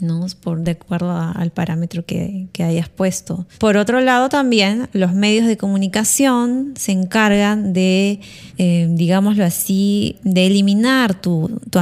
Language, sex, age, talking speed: Spanish, female, 20-39, 135 wpm